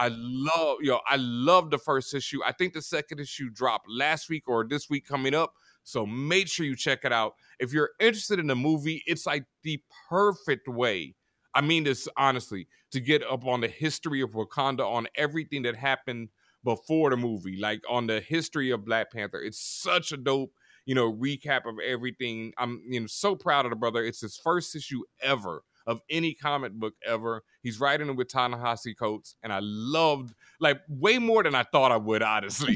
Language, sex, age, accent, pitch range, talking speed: English, male, 30-49, American, 120-155 Hz, 200 wpm